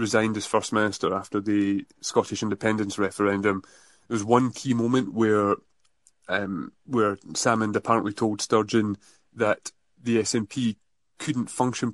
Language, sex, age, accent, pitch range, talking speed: English, male, 30-49, British, 105-120 Hz, 130 wpm